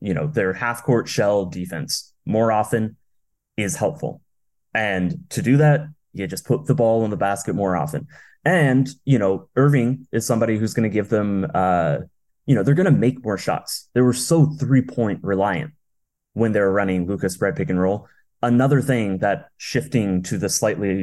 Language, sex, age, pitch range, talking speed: English, male, 20-39, 95-130 Hz, 190 wpm